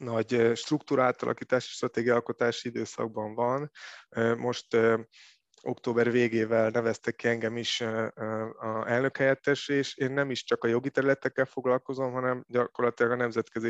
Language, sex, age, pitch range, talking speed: Hungarian, male, 20-39, 115-125 Hz, 120 wpm